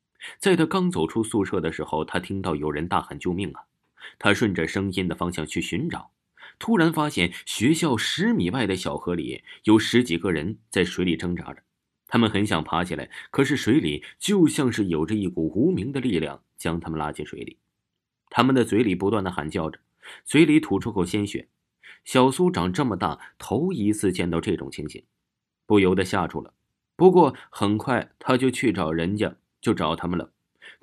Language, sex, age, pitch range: Chinese, male, 30-49, 85-115 Hz